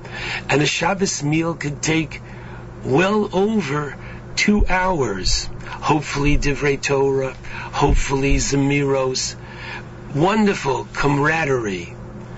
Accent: American